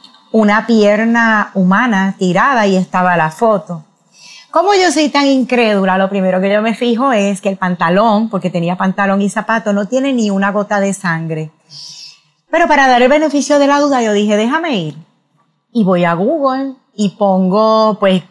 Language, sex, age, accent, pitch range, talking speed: Spanish, female, 30-49, American, 185-225 Hz, 175 wpm